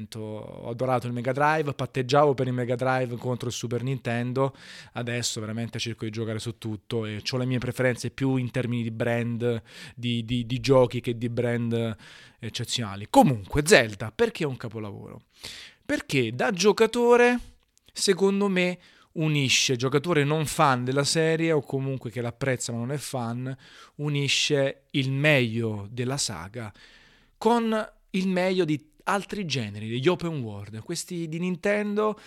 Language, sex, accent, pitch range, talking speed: Italian, male, native, 120-175 Hz, 150 wpm